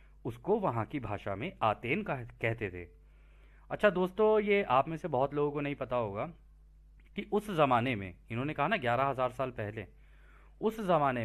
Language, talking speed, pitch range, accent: Hindi, 180 wpm, 100-160 Hz, native